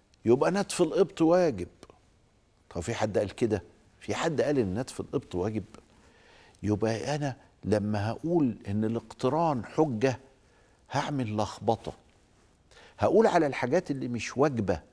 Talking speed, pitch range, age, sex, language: 125 wpm, 105-160 Hz, 50-69, male, Arabic